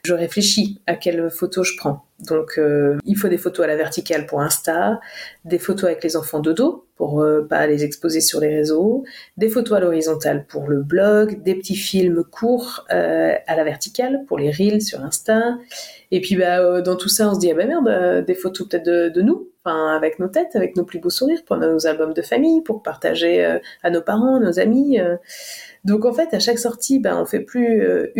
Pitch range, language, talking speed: 165-215 Hz, French, 230 wpm